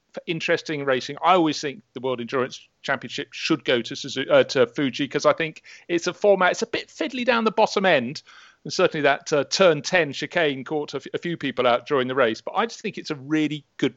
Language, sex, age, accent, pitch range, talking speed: English, male, 40-59, British, 140-180 Hz, 240 wpm